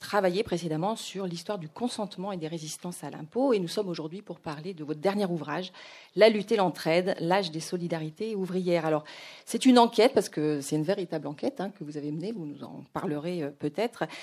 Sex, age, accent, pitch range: female, 40-59, French, 170-220 Hz